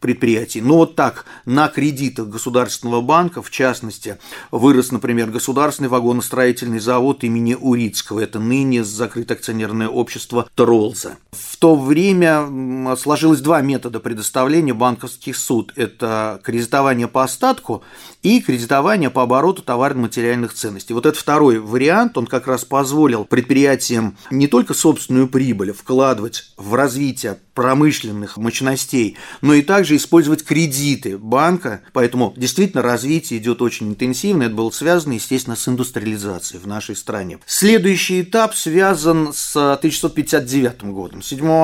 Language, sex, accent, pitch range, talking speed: Russian, male, native, 120-150 Hz, 125 wpm